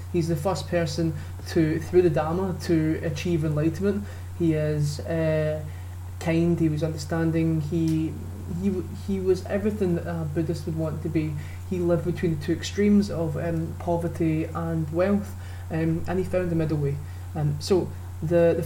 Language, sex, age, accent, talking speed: English, male, 20-39, British, 170 wpm